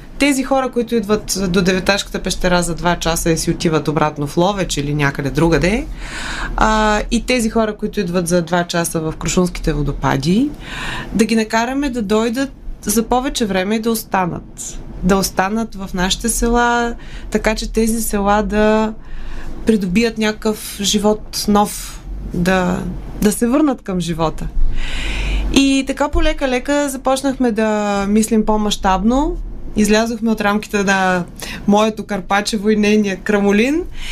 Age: 20-39